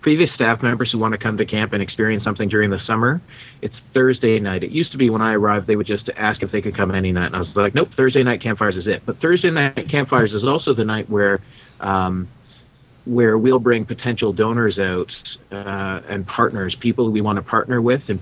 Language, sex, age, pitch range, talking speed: English, male, 30-49, 100-125 Hz, 235 wpm